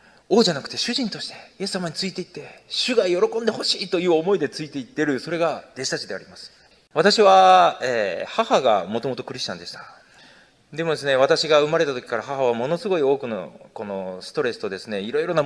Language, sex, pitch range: Japanese, male, 135-185 Hz